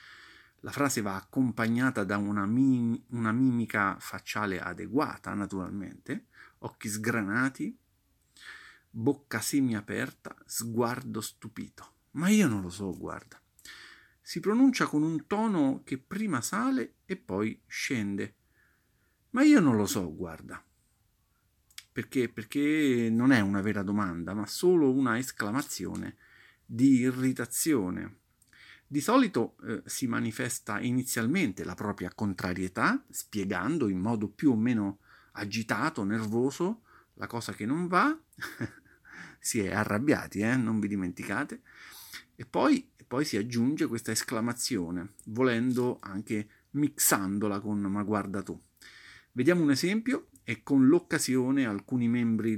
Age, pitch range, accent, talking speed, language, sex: 40-59, 105-140 Hz, native, 120 wpm, Italian, male